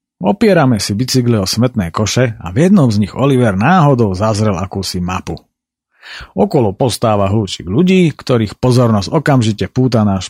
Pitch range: 105-140 Hz